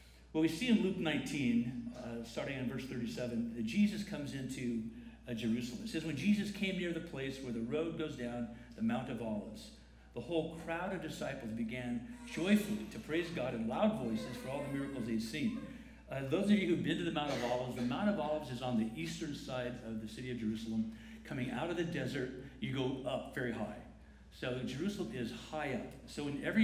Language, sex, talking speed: English, male, 215 wpm